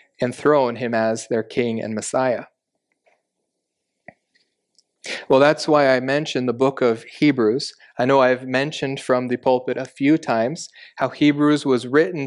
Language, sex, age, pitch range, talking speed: English, male, 30-49, 125-145 Hz, 150 wpm